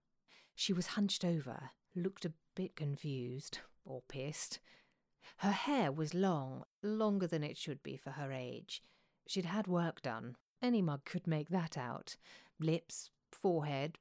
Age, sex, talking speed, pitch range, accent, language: 40-59, female, 145 wpm, 155-205 Hz, British, English